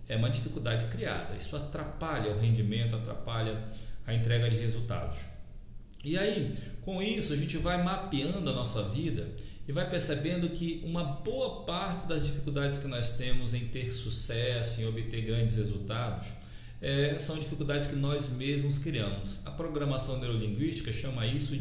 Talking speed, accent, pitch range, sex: 150 wpm, Brazilian, 110-145 Hz, male